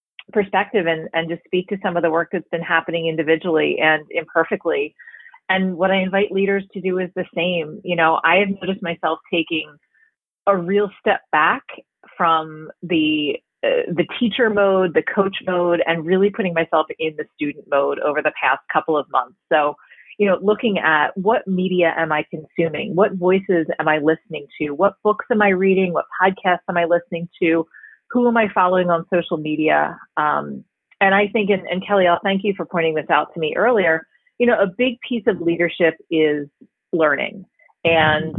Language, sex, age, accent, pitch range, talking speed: English, female, 30-49, American, 160-195 Hz, 190 wpm